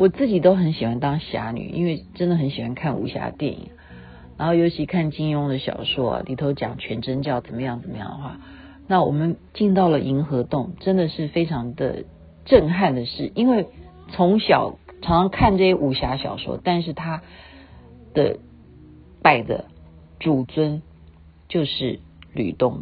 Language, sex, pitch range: Chinese, female, 115-185 Hz